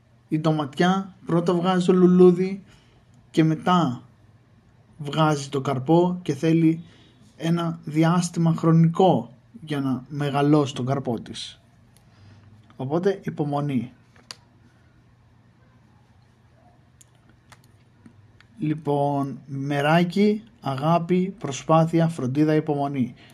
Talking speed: 75 wpm